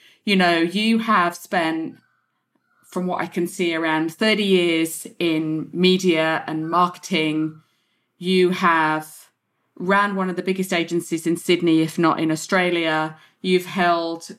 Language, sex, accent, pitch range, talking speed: English, female, British, 160-200 Hz, 140 wpm